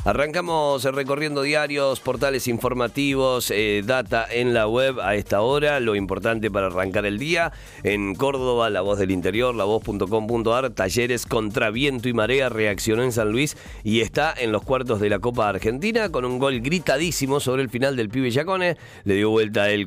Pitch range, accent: 100-130 Hz, Argentinian